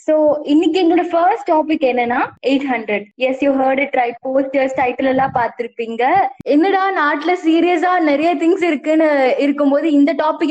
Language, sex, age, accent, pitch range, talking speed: Tamil, female, 20-39, native, 260-340 Hz, 70 wpm